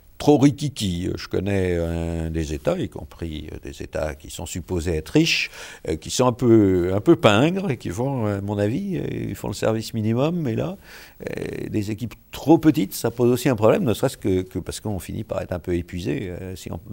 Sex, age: male, 60-79